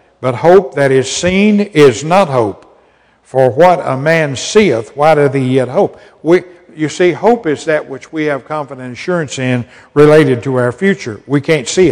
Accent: American